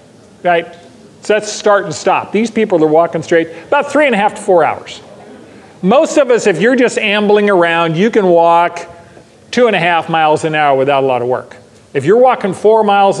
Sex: male